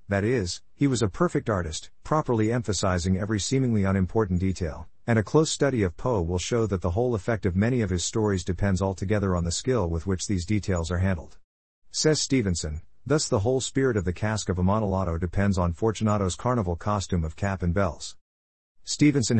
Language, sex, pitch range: English, male, 90-115 Hz